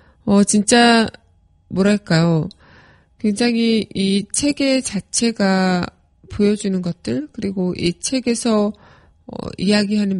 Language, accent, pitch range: Korean, native, 180-220 Hz